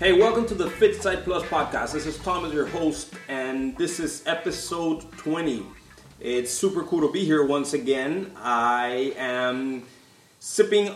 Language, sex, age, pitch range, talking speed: English, male, 30-49, 135-170 Hz, 160 wpm